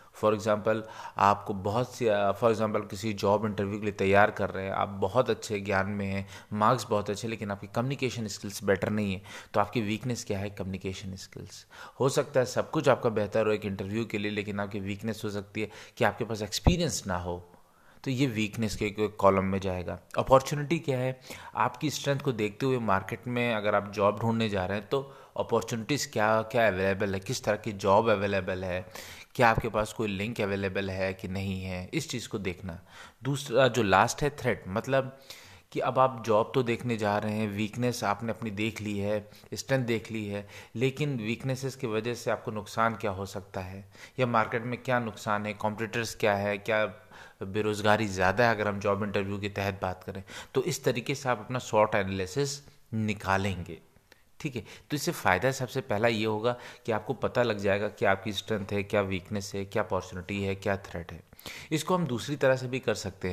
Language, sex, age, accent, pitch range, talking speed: Hindi, male, 20-39, native, 100-120 Hz, 205 wpm